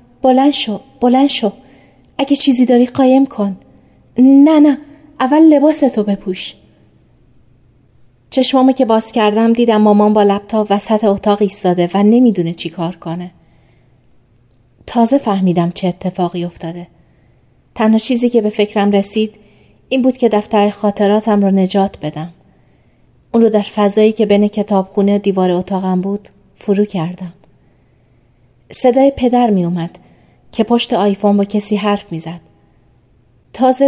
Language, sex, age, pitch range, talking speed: Persian, female, 30-49, 175-235 Hz, 130 wpm